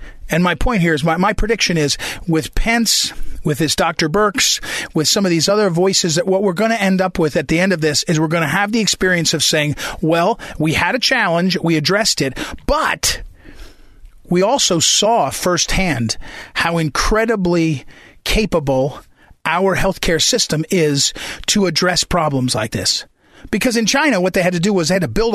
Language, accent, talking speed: English, American, 190 wpm